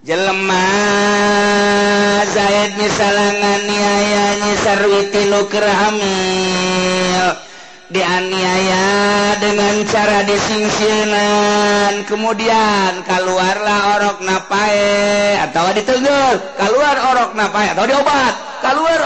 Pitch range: 185-225 Hz